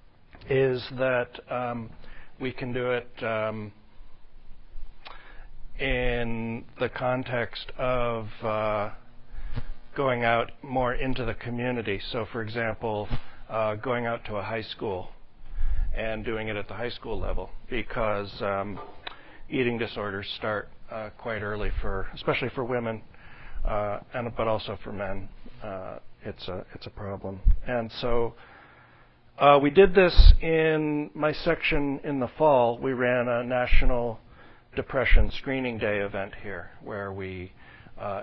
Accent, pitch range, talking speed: American, 105-125 Hz, 135 wpm